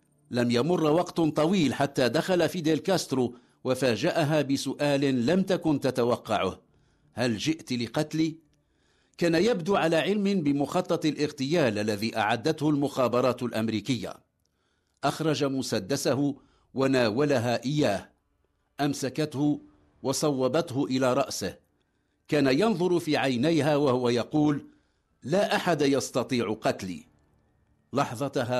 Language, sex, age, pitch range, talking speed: English, male, 50-69, 120-160 Hz, 95 wpm